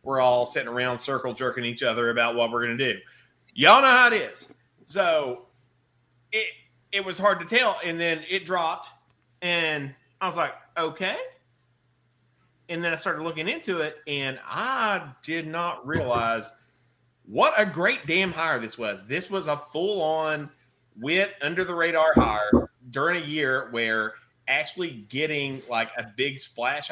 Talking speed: 165 wpm